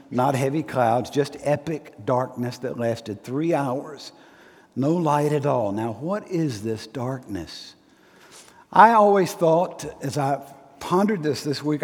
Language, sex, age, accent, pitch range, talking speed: English, male, 60-79, American, 140-190 Hz, 140 wpm